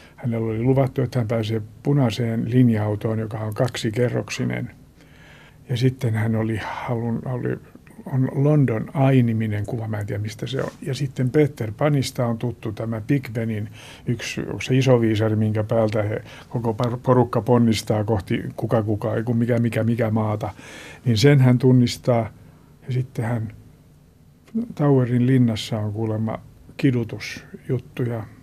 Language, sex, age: Finnish, male, 50-69